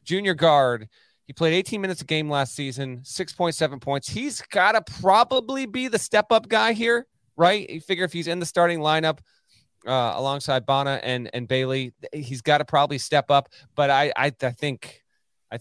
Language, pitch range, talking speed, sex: English, 120-150 Hz, 195 wpm, male